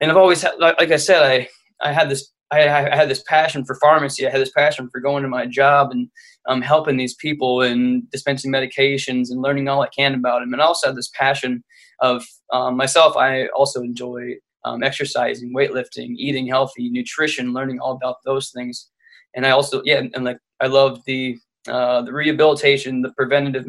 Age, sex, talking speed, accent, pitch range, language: 20-39, male, 205 wpm, American, 130-150 Hz, English